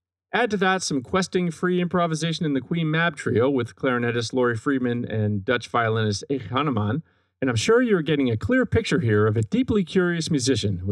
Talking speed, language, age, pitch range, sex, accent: 200 wpm, English, 40-59, 110-170 Hz, male, American